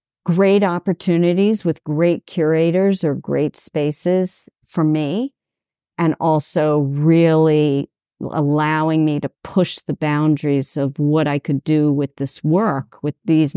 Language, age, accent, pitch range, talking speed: English, 50-69, American, 145-170 Hz, 130 wpm